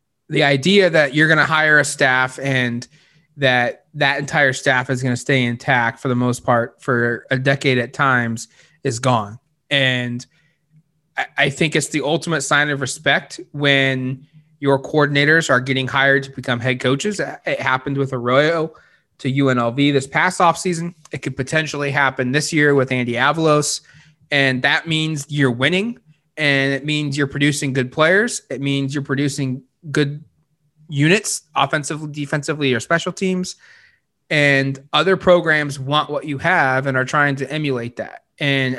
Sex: male